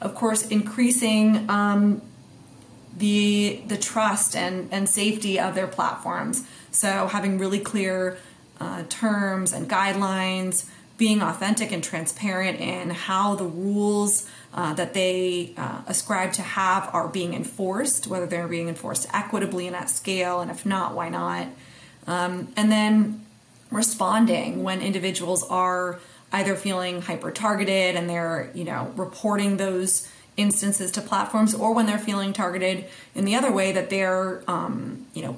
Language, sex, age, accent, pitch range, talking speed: English, female, 20-39, American, 180-205 Hz, 145 wpm